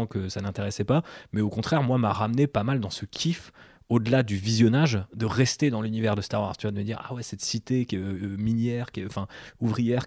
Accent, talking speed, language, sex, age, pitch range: French, 250 wpm, French, male, 30-49, 105-130 Hz